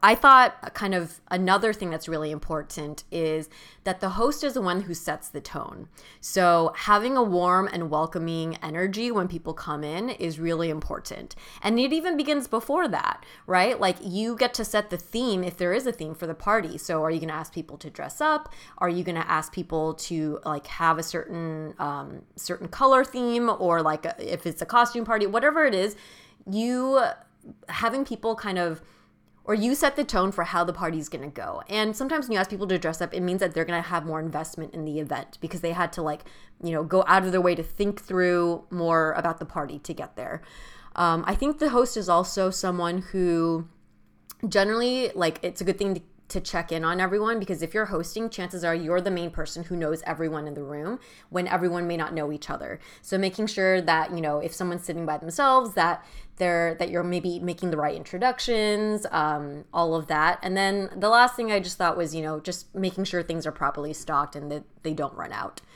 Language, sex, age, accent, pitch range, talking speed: English, female, 20-39, American, 160-210 Hz, 220 wpm